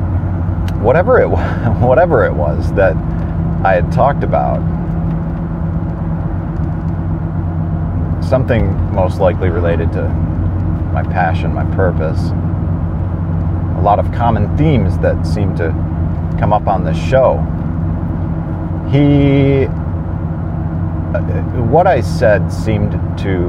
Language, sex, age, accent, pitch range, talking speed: English, male, 40-59, American, 80-90 Hz, 100 wpm